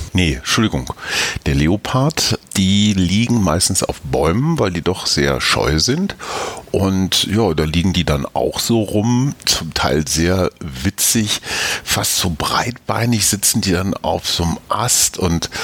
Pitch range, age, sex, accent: 80-105 Hz, 50-69, male, German